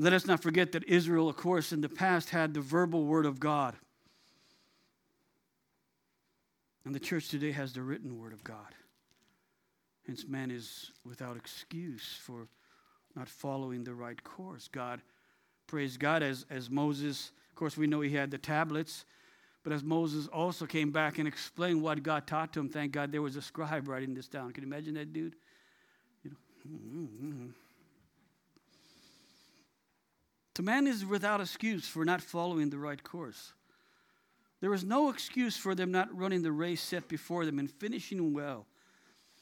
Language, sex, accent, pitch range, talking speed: English, male, American, 130-165 Hz, 165 wpm